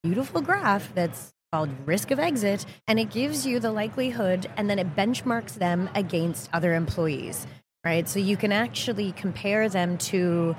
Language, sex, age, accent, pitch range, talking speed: English, female, 30-49, American, 165-205 Hz, 165 wpm